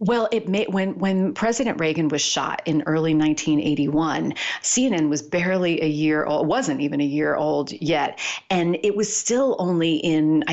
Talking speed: 170 wpm